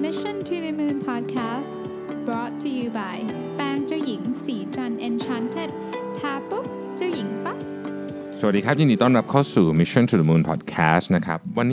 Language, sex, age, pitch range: Thai, male, 20-39, 80-135 Hz